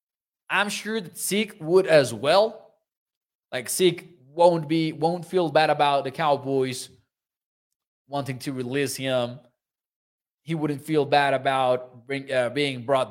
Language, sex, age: English, male, 20-39